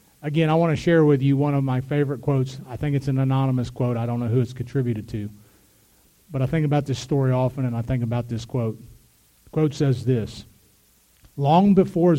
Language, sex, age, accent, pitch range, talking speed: English, male, 40-59, American, 110-145 Hz, 215 wpm